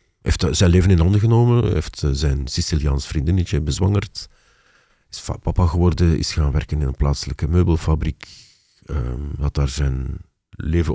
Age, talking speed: 50-69, 155 wpm